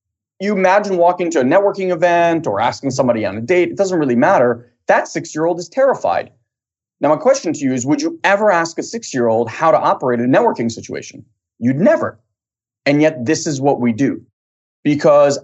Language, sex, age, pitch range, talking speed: English, male, 20-39, 120-160 Hz, 190 wpm